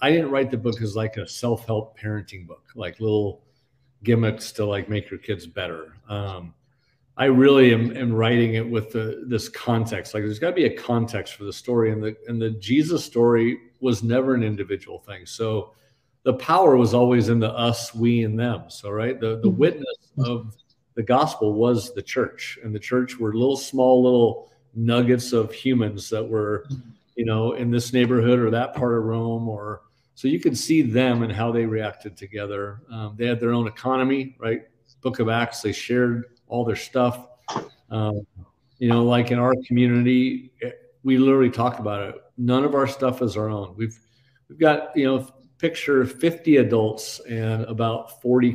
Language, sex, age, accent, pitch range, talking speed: English, male, 50-69, American, 110-125 Hz, 185 wpm